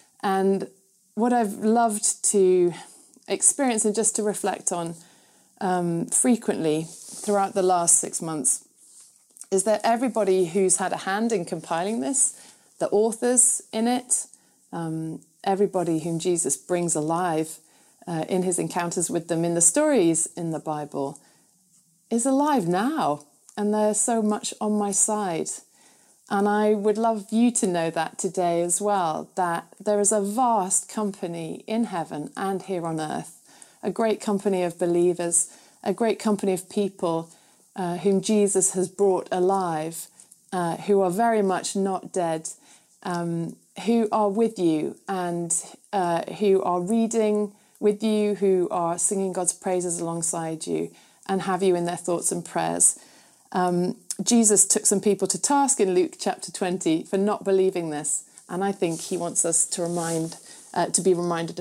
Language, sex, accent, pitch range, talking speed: English, female, British, 170-210 Hz, 155 wpm